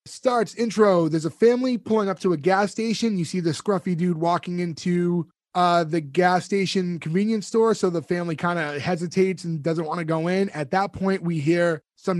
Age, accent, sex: 20-39, American, male